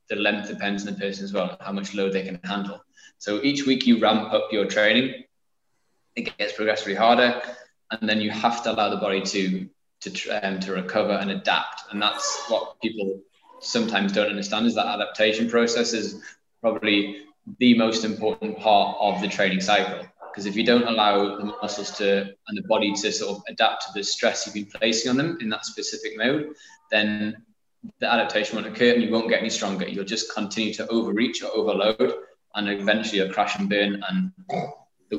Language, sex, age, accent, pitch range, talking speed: English, male, 20-39, British, 100-110 Hz, 200 wpm